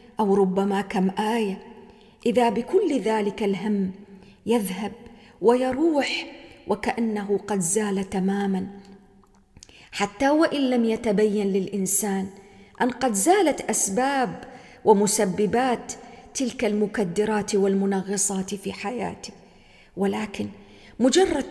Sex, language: female, English